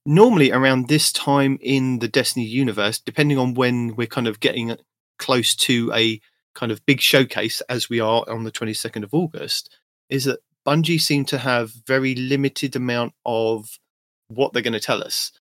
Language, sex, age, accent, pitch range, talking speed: English, male, 30-49, British, 120-145 Hz, 180 wpm